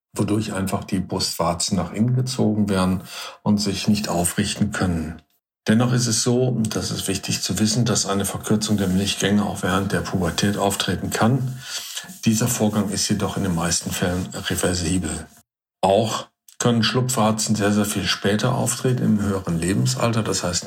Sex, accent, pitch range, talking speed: male, German, 95-110 Hz, 165 wpm